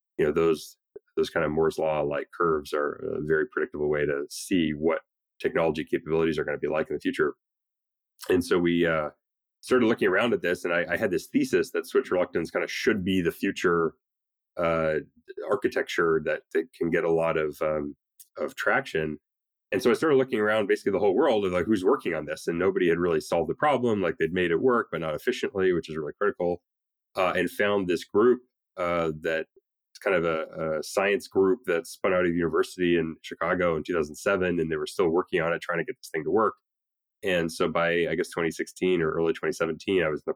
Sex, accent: male, American